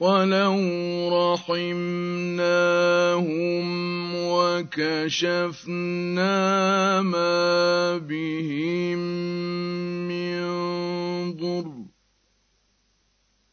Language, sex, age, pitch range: Arabic, male, 50-69, 175-195 Hz